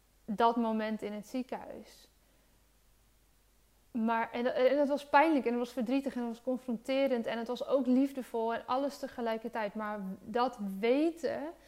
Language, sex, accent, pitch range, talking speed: Dutch, female, Dutch, 220-250 Hz, 150 wpm